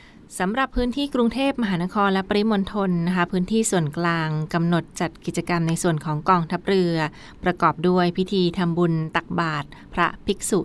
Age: 20-39